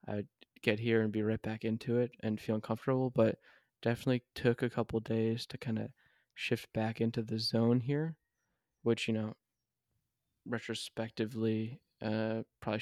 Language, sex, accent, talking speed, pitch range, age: English, male, American, 160 wpm, 110-120 Hz, 10-29